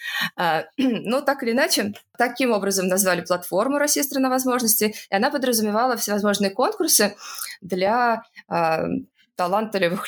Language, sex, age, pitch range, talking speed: Russian, female, 20-39, 185-235 Hz, 115 wpm